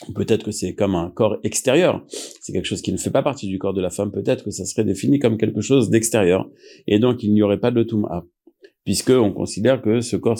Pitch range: 95-115 Hz